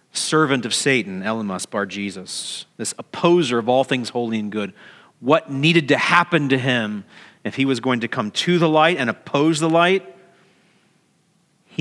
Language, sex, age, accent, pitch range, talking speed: English, male, 40-59, American, 125-175 Hz, 175 wpm